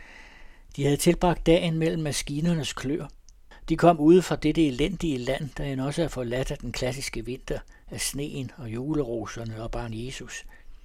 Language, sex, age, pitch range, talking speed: Danish, male, 60-79, 110-145 Hz, 165 wpm